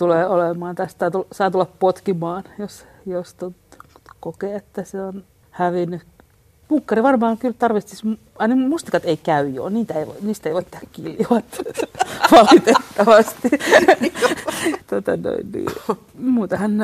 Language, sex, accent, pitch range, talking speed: Finnish, female, native, 180-230 Hz, 100 wpm